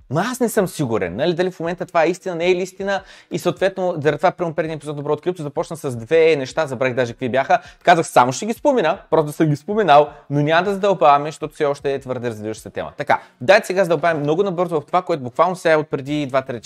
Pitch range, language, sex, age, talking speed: 125-170 Hz, Bulgarian, male, 30-49, 250 wpm